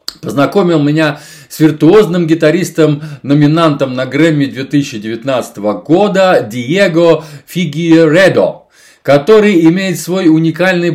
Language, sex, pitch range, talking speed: Russian, male, 145-175 Hz, 90 wpm